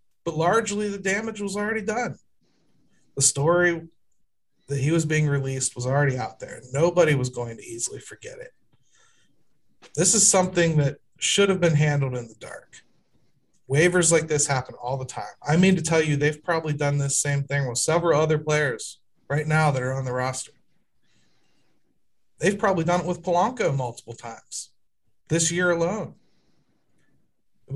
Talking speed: 165 wpm